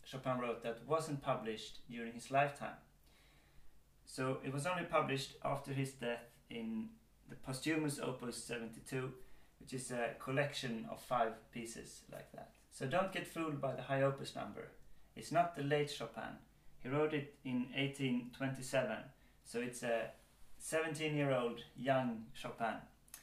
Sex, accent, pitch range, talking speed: male, Swedish, 120-145 Hz, 145 wpm